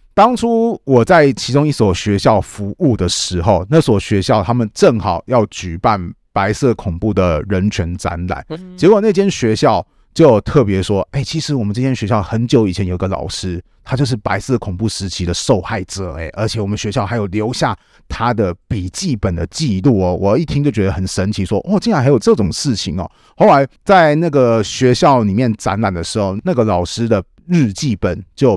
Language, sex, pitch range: Chinese, male, 95-130 Hz